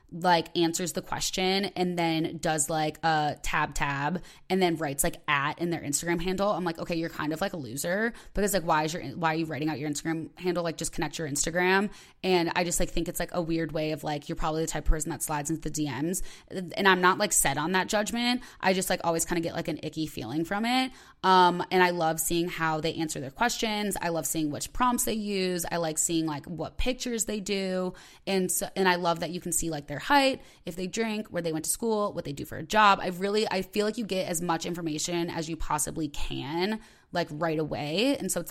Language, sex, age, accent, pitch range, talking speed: English, female, 20-39, American, 155-185 Hz, 250 wpm